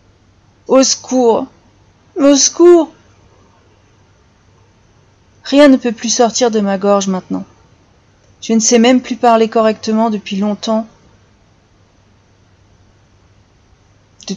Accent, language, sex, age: French, French, female, 30-49